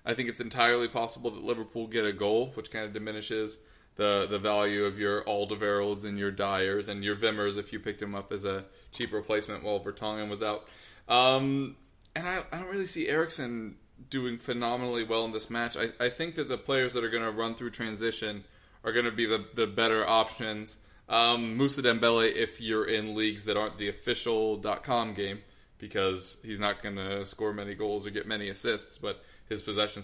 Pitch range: 105-120 Hz